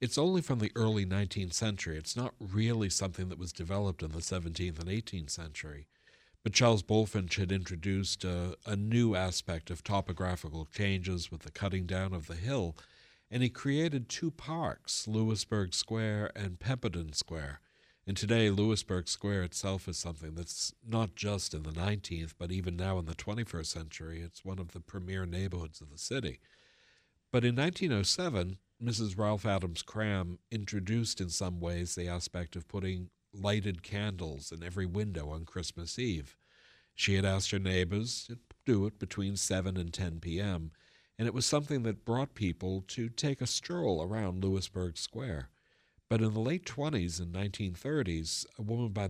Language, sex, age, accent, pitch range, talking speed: English, male, 60-79, American, 85-110 Hz, 170 wpm